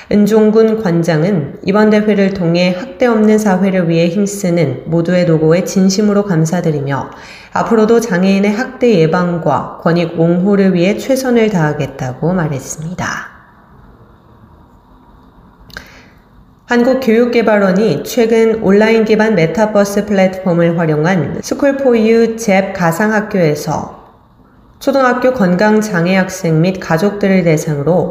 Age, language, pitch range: 30-49, Korean, 170-215 Hz